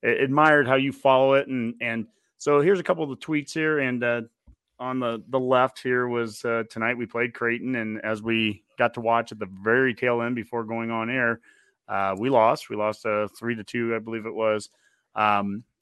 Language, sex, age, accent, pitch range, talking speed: English, male, 30-49, American, 110-135 Hz, 220 wpm